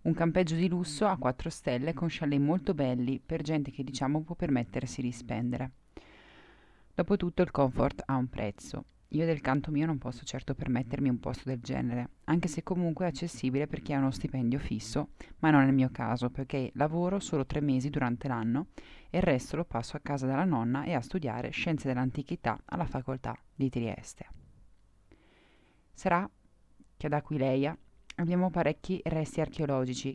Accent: native